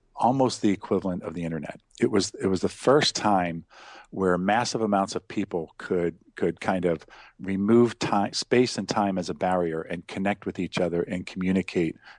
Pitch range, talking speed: 90-105 Hz, 180 wpm